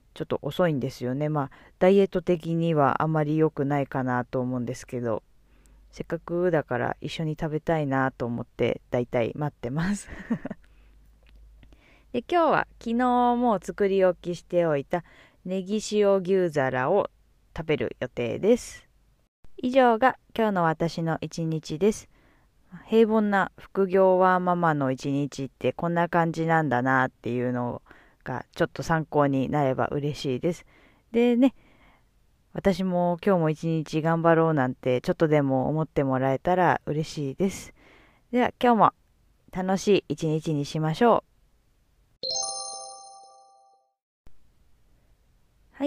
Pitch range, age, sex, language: 135-195 Hz, 20-39, female, Japanese